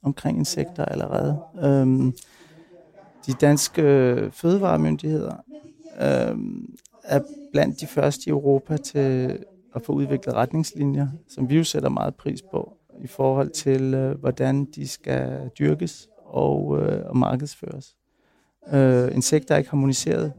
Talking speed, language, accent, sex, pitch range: 105 wpm, Danish, native, male, 130-160 Hz